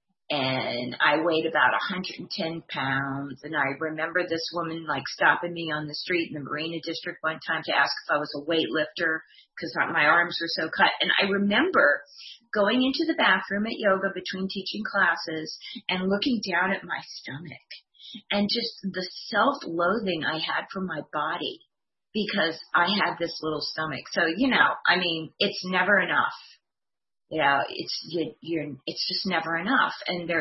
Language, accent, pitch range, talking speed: English, American, 160-195 Hz, 165 wpm